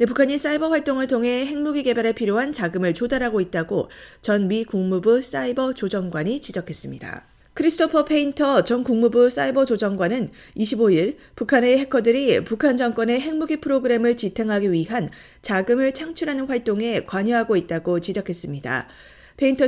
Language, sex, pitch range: Korean, female, 195-255 Hz